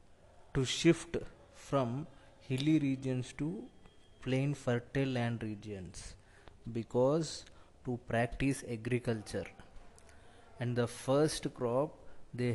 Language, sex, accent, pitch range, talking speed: English, male, Indian, 115-140 Hz, 90 wpm